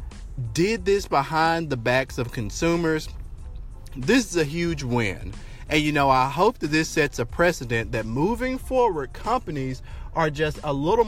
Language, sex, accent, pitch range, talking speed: English, male, American, 115-155 Hz, 165 wpm